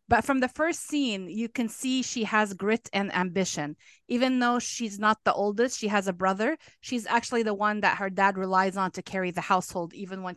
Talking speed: 220 wpm